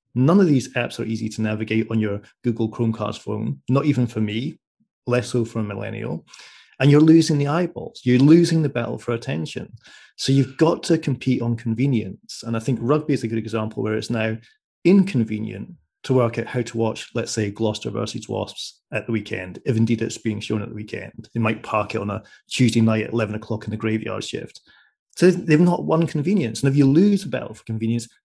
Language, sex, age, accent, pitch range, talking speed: English, male, 30-49, British, 110-130 Hz, 215 wpm